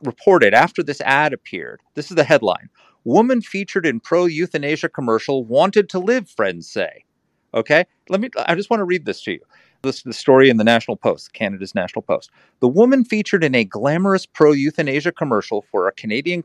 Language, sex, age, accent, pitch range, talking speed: English, male, 40-59, American, 135-195 Hz, 190 wpm